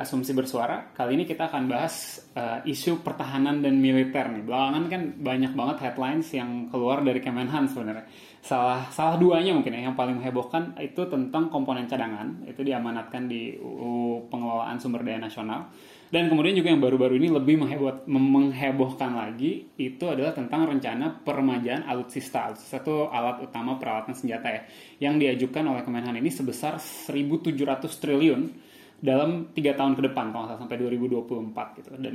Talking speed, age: 155 wpm, 20-39